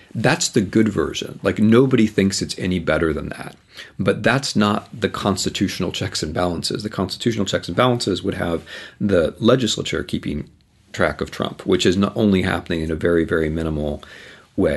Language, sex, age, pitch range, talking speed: English, male, 40-59, 85-105 Hz, 180 wpm